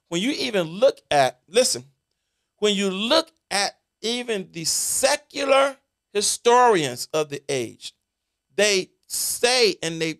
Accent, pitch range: American, 140-195 Hz